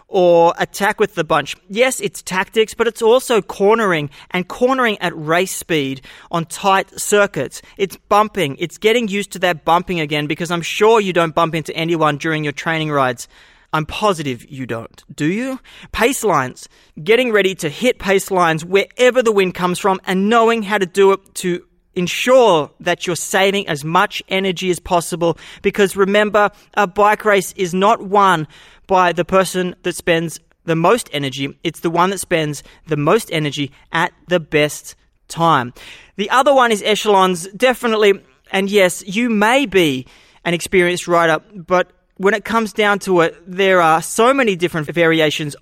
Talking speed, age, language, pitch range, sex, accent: 170 wpm, 30-49, English, 165-205 Hz, male, Australian